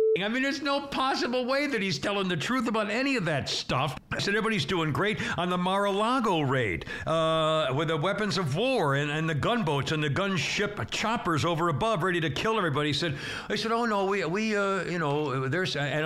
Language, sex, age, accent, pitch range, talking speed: English, male, 60-79, American, 150-200 Hz, 215 wpm